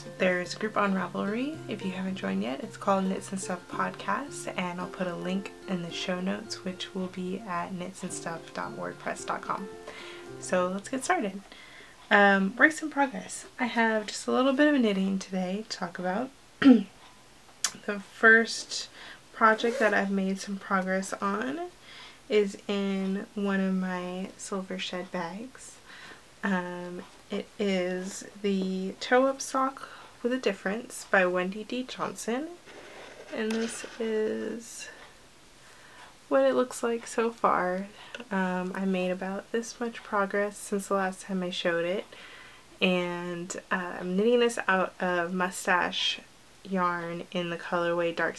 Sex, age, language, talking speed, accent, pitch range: female, 20-39, English, 145 wpm, American, 180-225 Hz